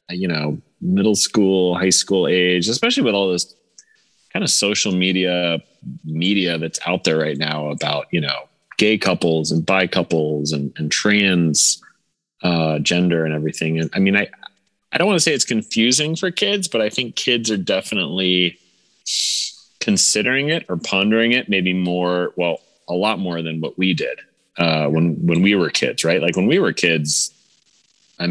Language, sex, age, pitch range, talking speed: English, male, 30-49, 75-95 Hz, 175 wpm